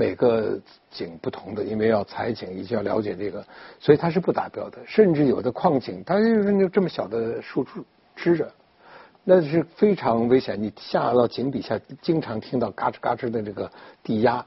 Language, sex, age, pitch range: Chinese, male, 60-79, 115-175 Hz